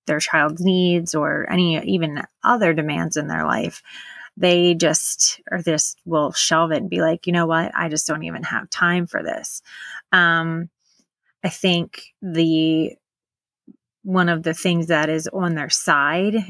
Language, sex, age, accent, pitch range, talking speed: English, female, 30-49, American, 155-180 Hz, 165 wpm